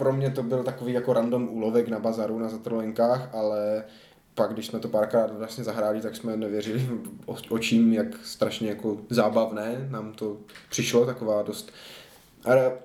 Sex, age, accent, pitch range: male, 20-39, native, 110-125 Hz